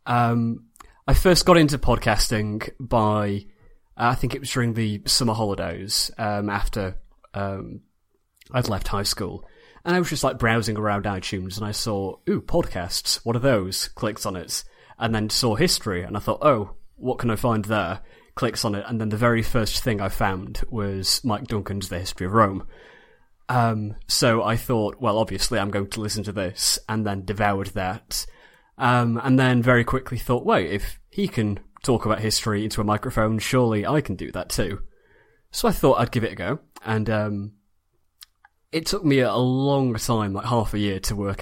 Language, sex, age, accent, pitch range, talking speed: English, male, 20-39, British, 100-125 Hz, 195 wpm